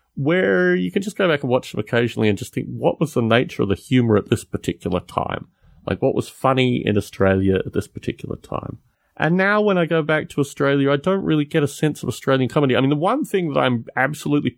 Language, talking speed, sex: English, 245 wpm, male